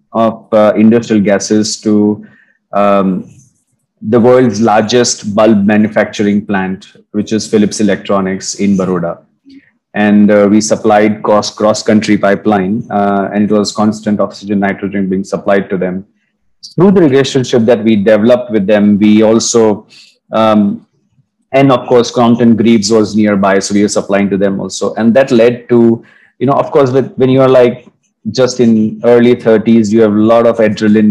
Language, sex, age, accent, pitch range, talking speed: English, male, 30-49, Indian, 105-115 Hz, 165 wpm